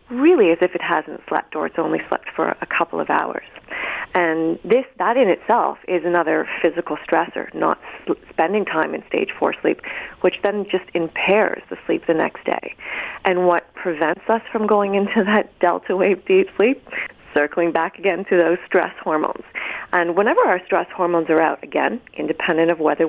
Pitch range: 170-215 Hz